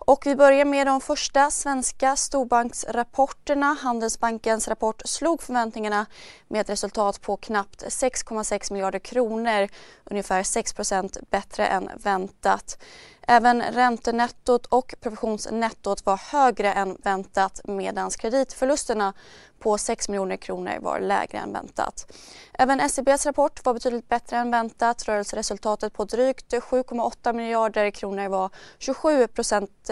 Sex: female